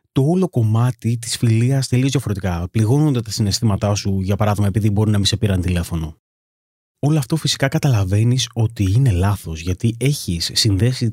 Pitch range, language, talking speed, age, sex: 95-130 Hz, Greek, 175 wpm, 30-49, male